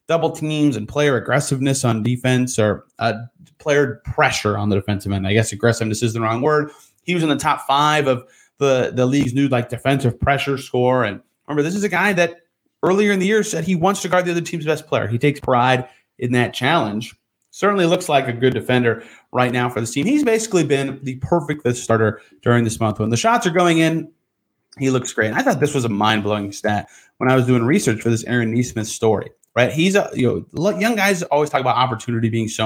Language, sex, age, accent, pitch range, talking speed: English, male, 30-49, American, 115-165 Hz, 230 wpm